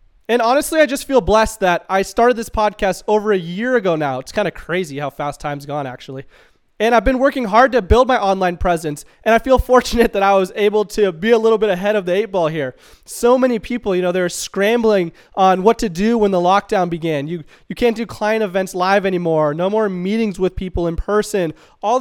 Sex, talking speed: male, 230 wpm